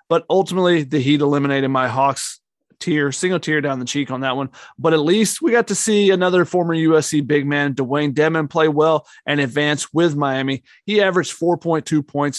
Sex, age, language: male, 30-49, English